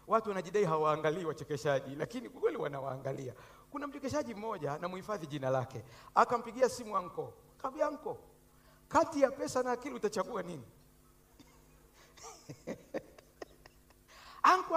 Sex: male